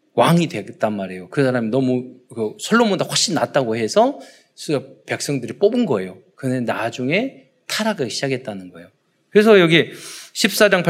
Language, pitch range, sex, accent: Korean, 135-200 Hz, male, native